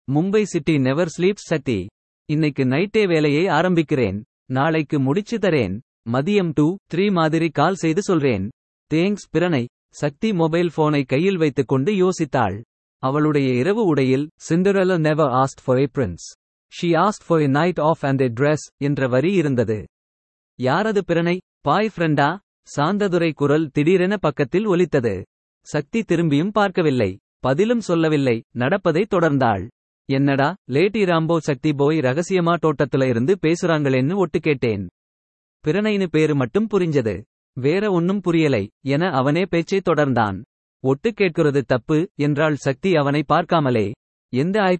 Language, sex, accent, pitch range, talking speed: Tamil, male, native, 135-180 Hz, 125 wpm